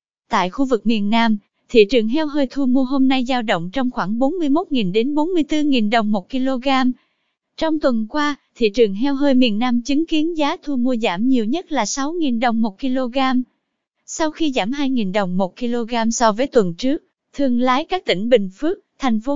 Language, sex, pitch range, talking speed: English, female, 230-290 Hz, 200 wpm